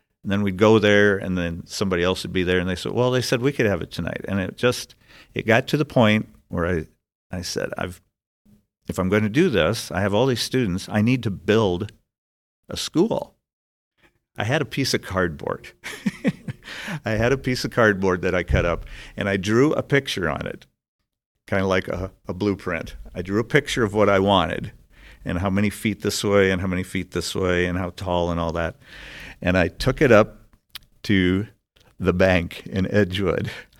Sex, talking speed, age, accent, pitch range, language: male, 210 wpm, 50-69, American, 90-105 Hz, English